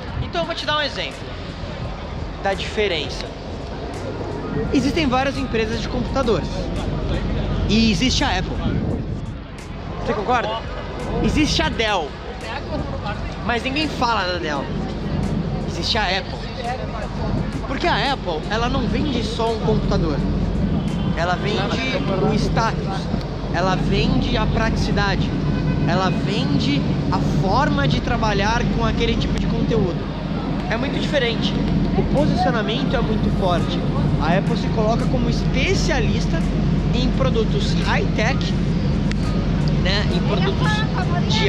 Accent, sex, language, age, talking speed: Brazilian, male, Portuguese, 20-39, 115 wpm